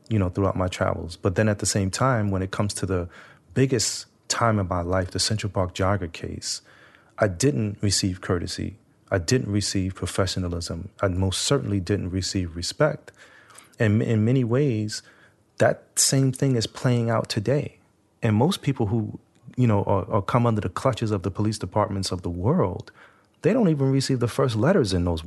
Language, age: English, 30-49